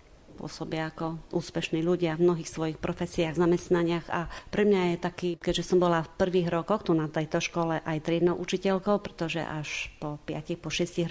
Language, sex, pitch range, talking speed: Slovak, female, 160-175 Hz, 180 wpm